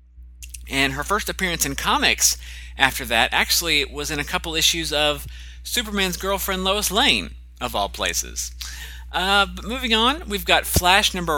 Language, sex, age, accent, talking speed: English, male, 30-49, American, 160 wpm